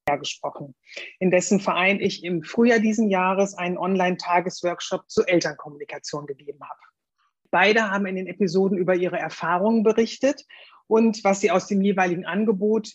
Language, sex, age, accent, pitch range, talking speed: German, female, 30-49, German, 180-230 Hz, 145 wpm